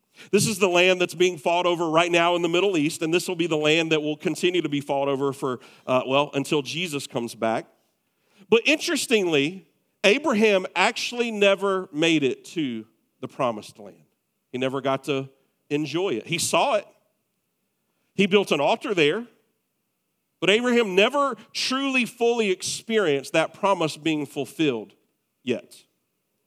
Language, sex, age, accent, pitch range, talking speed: English, male, 50-69, American, 145-210 Hz, 160 wpm